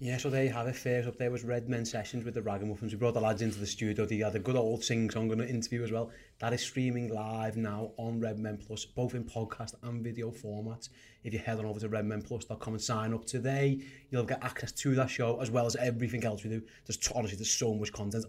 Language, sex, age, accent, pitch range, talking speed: English, male, 30-49, British, 110-125 Hz, 260 wpm